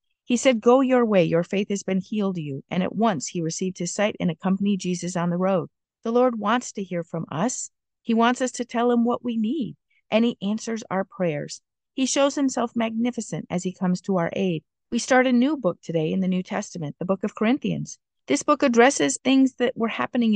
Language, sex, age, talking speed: English, female, 50-69, 225 wpm